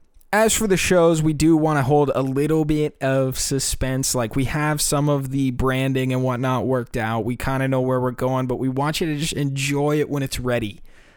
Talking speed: 230 wpm